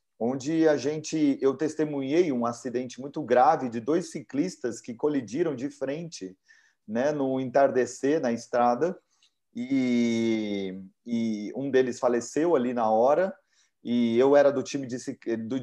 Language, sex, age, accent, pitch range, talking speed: Portuguese, male, 30-49, Brazilian, 115-145 Hz, 140 wpm